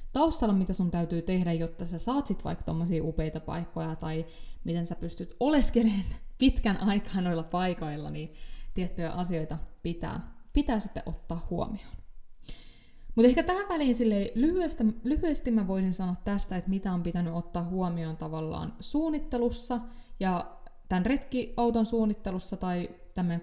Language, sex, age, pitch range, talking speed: Finnish, female, 20-39, 170-220 Hz, 140 wpm